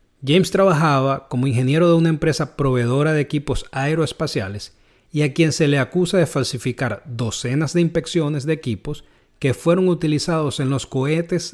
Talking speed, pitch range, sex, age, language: 155 wpm, 125-170 Hz, male, 30-49, Spanish